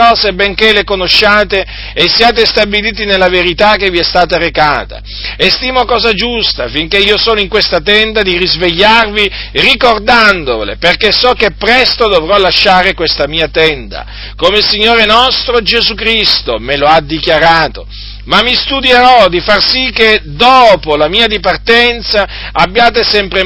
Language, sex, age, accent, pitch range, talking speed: Italian, male, 50-69, native, 170-220 Hz, 145 wpm